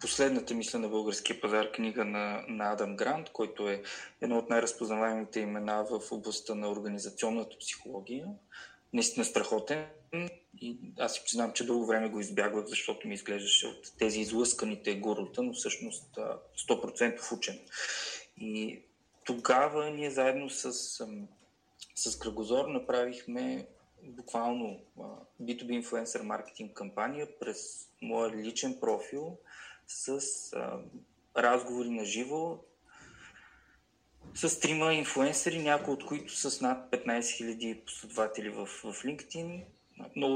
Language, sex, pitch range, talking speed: Bulgarian, male, 115-155 Hz, 120 wpm